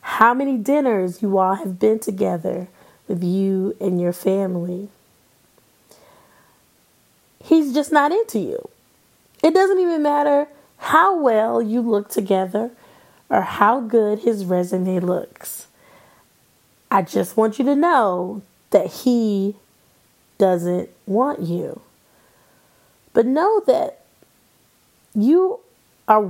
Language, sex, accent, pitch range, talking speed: English, female, American, 190-240 Hz, 110 wpm